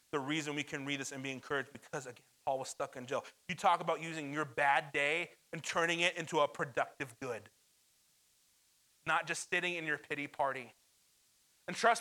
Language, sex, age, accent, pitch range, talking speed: English, male, 30-49, American, 135-185 Hz, 195 wpm